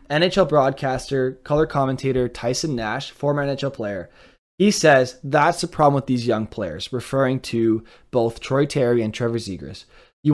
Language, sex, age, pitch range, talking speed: English, male, 20-39, 120-160 Hz, 155 wpm